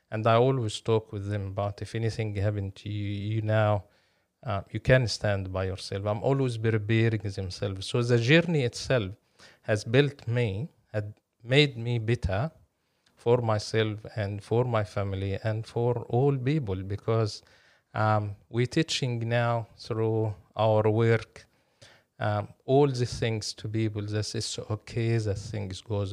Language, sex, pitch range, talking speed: English, male, 100-115 Hz, 150 wpm